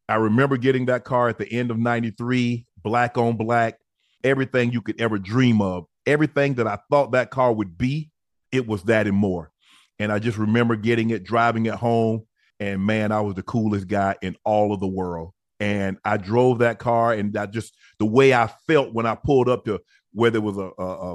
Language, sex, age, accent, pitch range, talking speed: English, male, 40-59, American, 105-120 Hz, 215 wpm